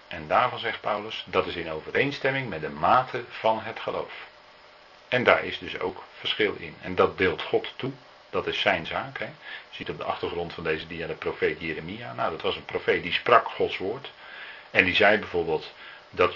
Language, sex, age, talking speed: Dutch, male, 40-59, 205 wpm